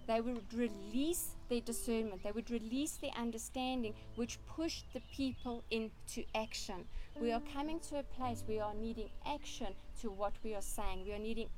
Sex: female